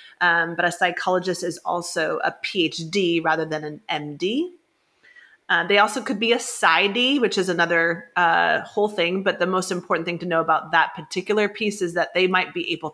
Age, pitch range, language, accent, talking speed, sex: 30-49, 175-215 Hz, English, American, 195 wpm, female